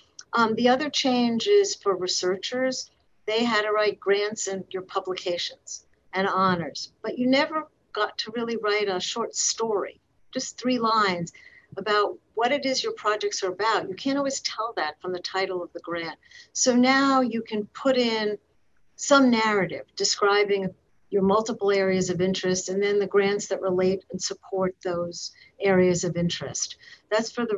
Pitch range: 185-225 Hz